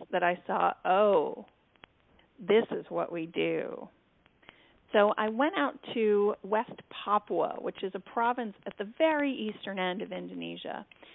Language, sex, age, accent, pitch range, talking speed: English, female, 40-59, American, 195-230 Hz, 145 wpm